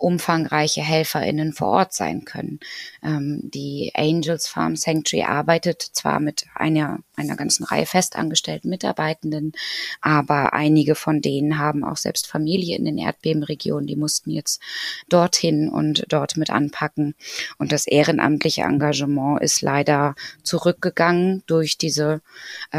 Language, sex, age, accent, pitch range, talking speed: German, female, 20-39, German, 150-170 Hz, 125 wpm